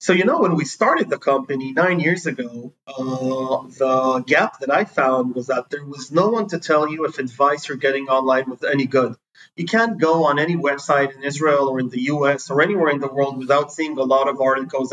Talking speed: 230 wpm